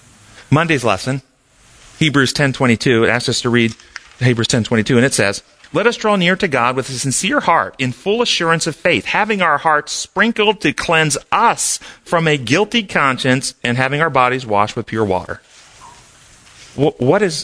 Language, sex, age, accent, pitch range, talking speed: English, male, 40-59, American, 125-180 Hz, 170 wpm